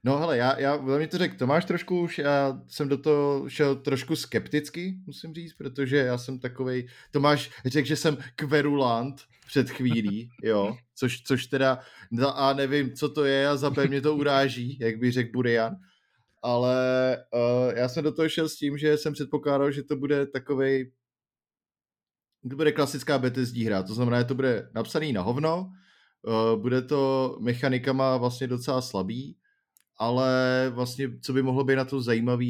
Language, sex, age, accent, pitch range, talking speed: Czech, male, 20-39, native, 115-140 Hz, 175 wpm